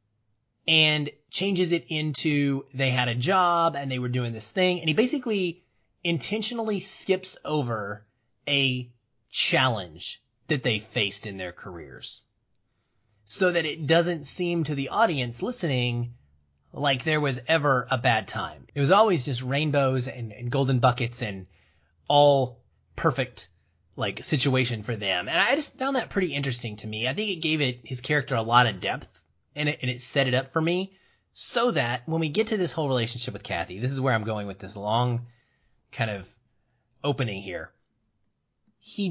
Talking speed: 170 wpm